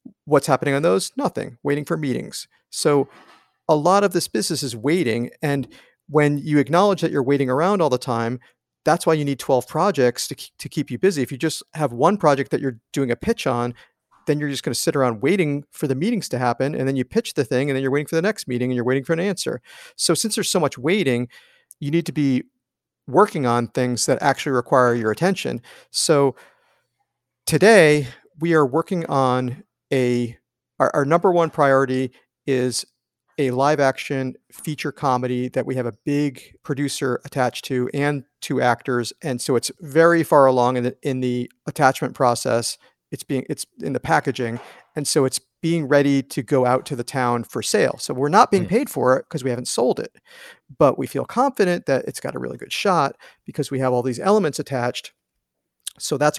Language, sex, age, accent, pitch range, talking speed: English, male, 40-59, American, 125-160 Hz, 205 wpm